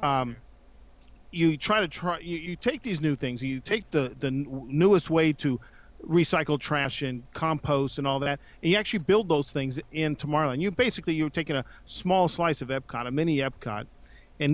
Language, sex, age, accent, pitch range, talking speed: English, male, 40-59, American, 135-165 Hz, 190 wpm